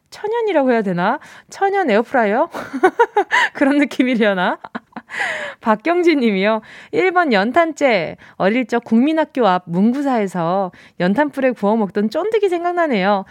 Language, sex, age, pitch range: Korean, female, 20-39, 200-305 Hz